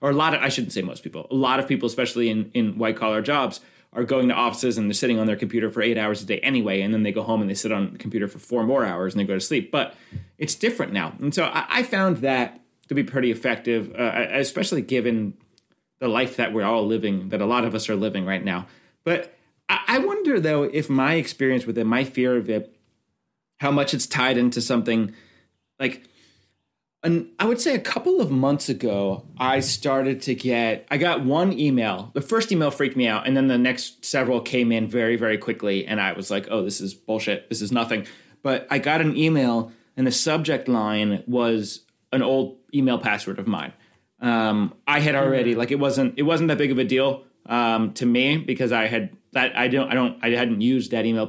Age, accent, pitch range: 30-49, American, 110-135 Hz